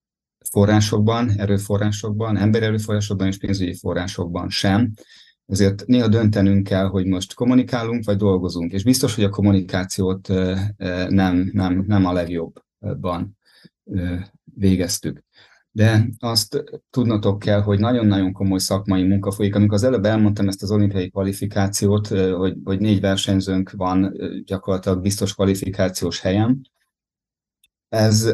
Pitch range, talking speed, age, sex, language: 95-110 Hz, 115 wpm, 30-49, male, Hungarian